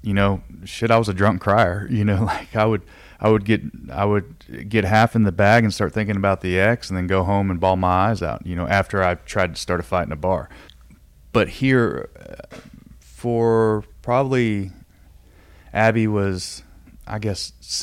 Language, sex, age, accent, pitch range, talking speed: English, male, 30-49, American, 95-115 Hz, 195 wpm